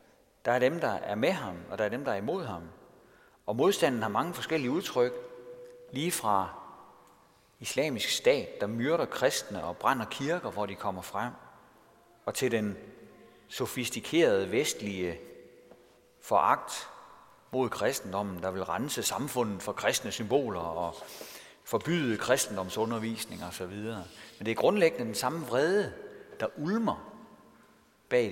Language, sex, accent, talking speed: Danish, male, native, 140 wpm